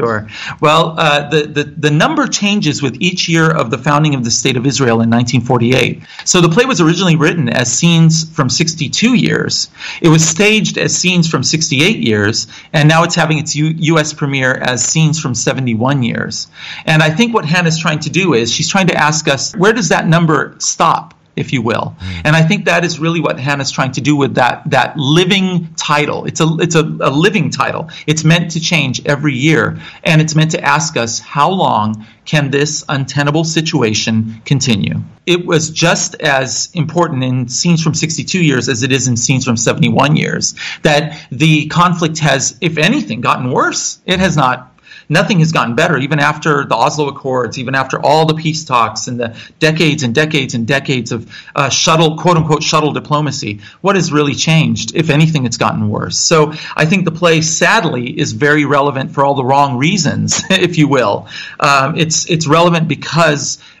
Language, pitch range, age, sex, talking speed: English, 135-165 Hz, 40-59, male, 190 wpm